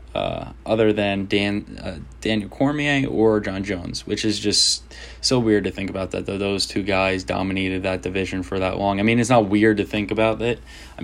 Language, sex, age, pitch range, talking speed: English, male, 10-29, 95-110 Hz, 215 wpm